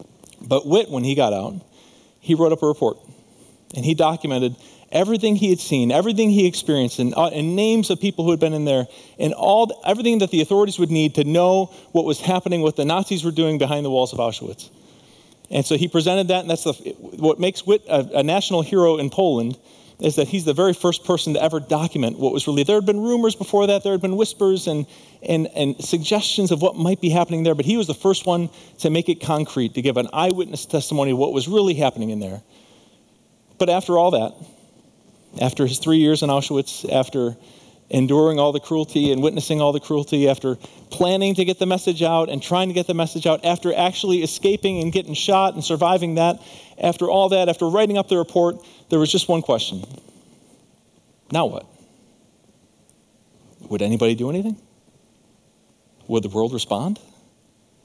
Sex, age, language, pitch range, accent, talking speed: male, 40-59, English, 145-185 Hz, American, 200 wpm